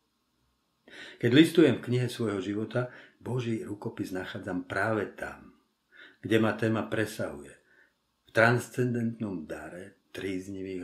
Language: Slovak